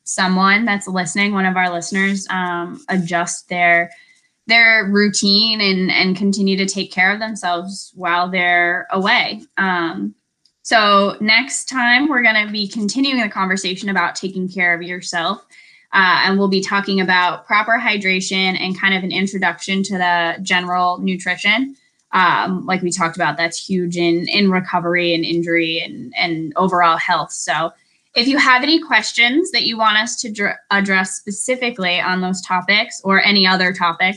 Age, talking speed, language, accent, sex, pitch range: 10-29, 160 wpm, English, American, female, 180-215 Hz